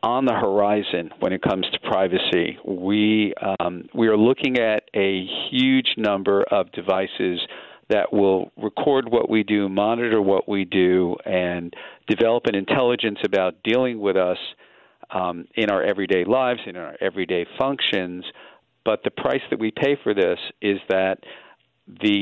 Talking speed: 155 wpm